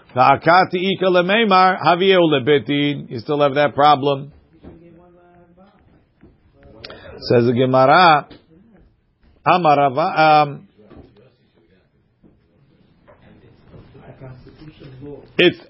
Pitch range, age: 140-180 Hz, 50-69